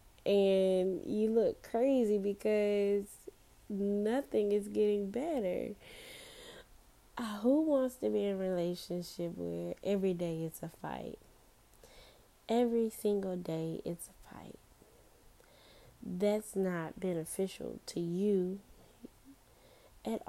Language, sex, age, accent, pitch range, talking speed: English, female, 10-29, American, 175-215 Hz, 100 wpm